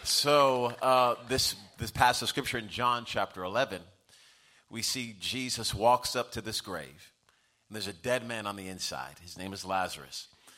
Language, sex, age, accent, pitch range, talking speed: English, male, 40-59, American, 115-150 Hz, 180 wpm